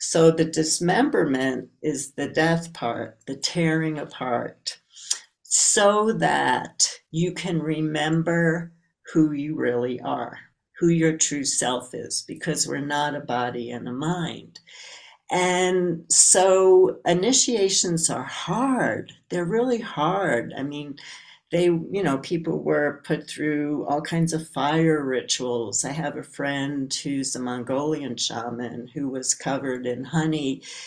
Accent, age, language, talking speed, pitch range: American, 60-79, English, 130 wpm, 135-170 Hz